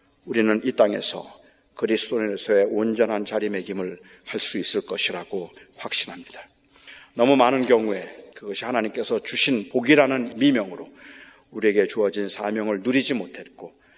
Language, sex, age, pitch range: Korean, male, 40-59, 110-145 Hz